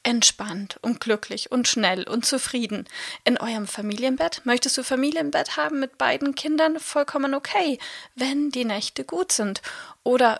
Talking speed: 145 wpm